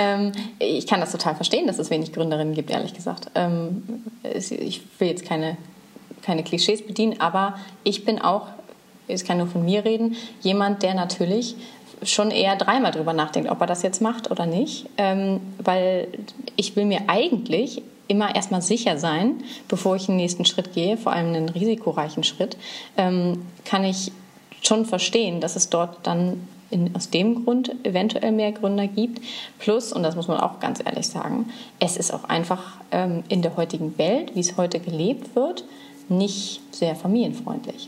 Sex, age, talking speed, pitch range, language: female, 30-49, 170 wpm, 175-220 Hz, German